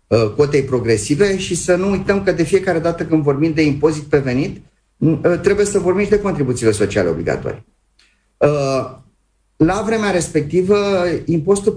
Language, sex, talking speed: Romanian, male, 145 wpm